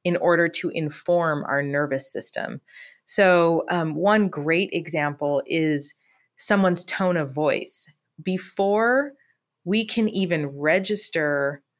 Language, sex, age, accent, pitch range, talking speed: English, female, 30-49, American, 155-195 Hz, 110 wpm